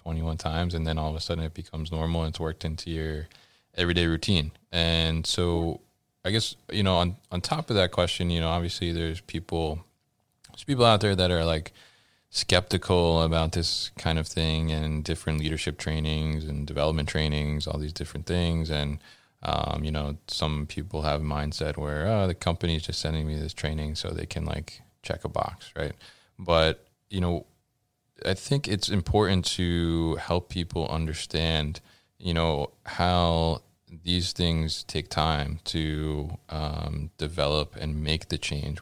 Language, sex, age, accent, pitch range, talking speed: English, male, 20-39, American, 80-90 Hz, 170 wpm